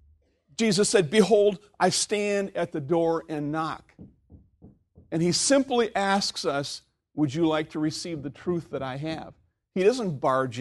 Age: 50-69